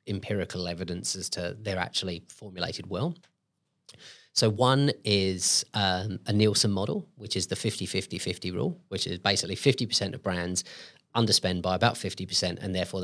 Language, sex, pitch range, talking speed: English, male, 95-115 Hz, 145 wpm